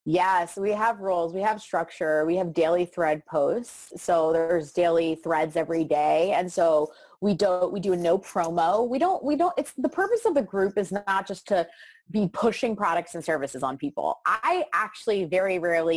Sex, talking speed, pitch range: female, 195 wpm, 170-245 Hz